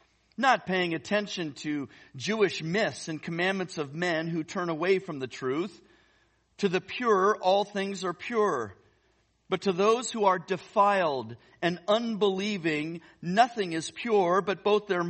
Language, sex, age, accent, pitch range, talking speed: English, male, 50-69, American, 145-200 Hz, 145 wpm